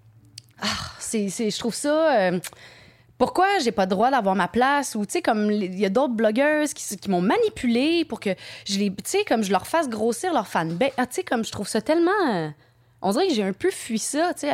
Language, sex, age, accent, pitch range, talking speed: French, female, 20-39, Canadian, 190-275 Hz, 250 wpm